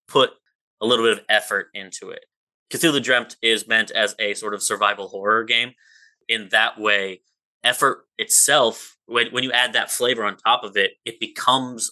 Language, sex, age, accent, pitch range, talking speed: English, male, 20-39, American, 105-160 Hz, 175 wpm